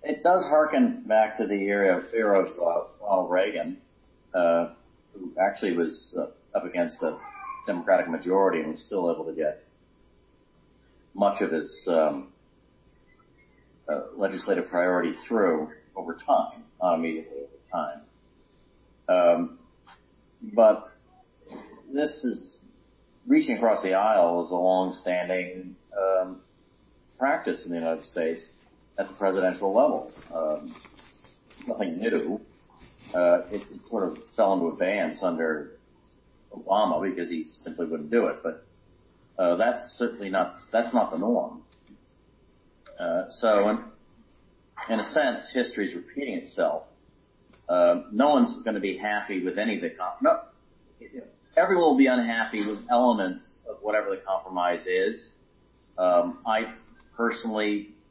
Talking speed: 130 wpm